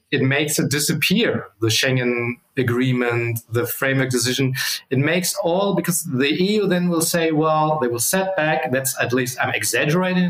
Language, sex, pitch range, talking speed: English, male, 125-165 Hz, 170 wpm